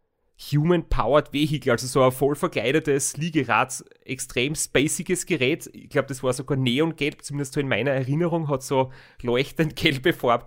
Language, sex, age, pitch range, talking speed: German, male, 30-49, 125-150 Hz, 155 wpm